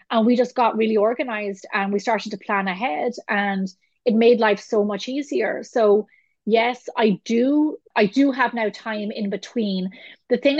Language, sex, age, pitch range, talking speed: English, female, 30-49, 200-230 Hz, 180 wpm